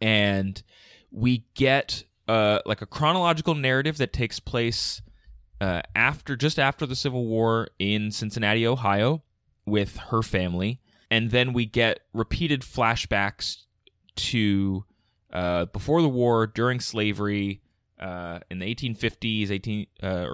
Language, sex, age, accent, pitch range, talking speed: English, male, 20-39, American, 95-115 Hz, 125 wpm